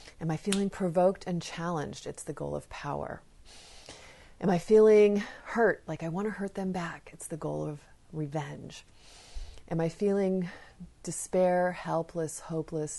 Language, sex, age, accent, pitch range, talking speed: English, female, 30-49, American, 150-195 Hz, 150 wpm